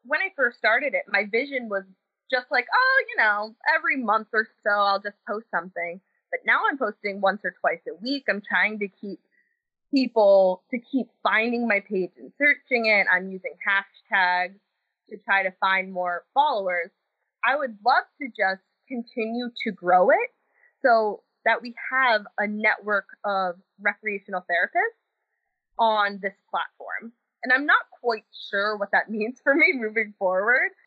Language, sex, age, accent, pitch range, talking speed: English, female, 20-39, American, 195-260 Hz, 165 wpm